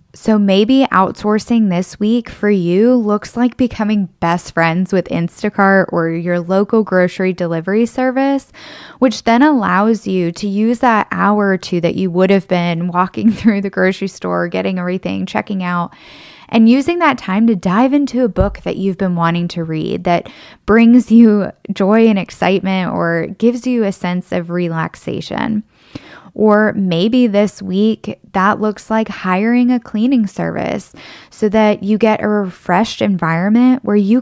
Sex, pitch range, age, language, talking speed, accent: female, 180-225 Hz, 10-29, English, 160 wpm, American